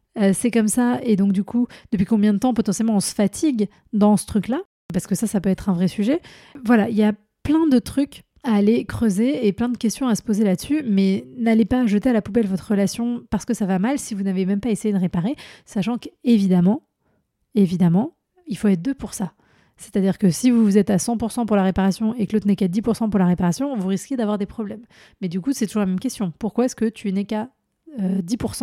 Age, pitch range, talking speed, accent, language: 30-49, 195-230 Hz, 245 wpm, French, French